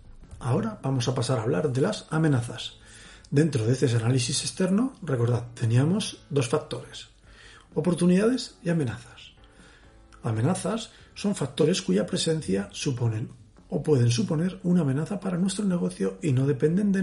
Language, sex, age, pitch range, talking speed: Spanish, male, 40-59, 120-160 Hz, 135 wpm